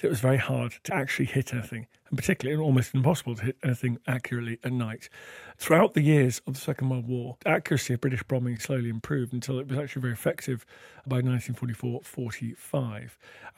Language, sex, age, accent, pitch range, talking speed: English, male, 40-59, British, 120-150 Hz, 180 wpm